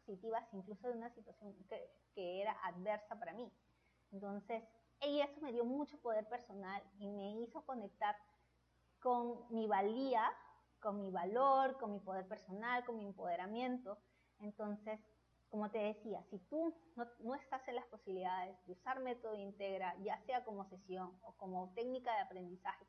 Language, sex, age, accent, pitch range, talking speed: Spanish, female, 30-49, American, 200-250 Hz, 155 wpm